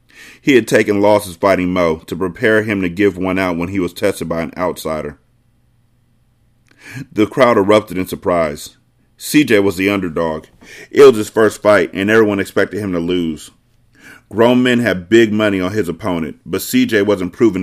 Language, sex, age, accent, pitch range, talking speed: English, male, 30-49, American, 90-115 Hz, 175 wpm